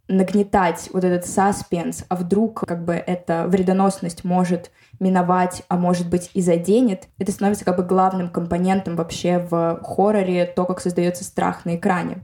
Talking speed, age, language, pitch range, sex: 155 wpm, 20-39, Russian, 175-195 Hz, female